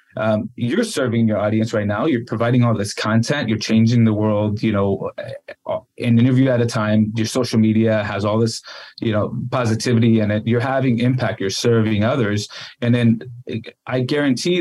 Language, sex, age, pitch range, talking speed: English, male, 20-39, 105-120 Hz, 175 wpm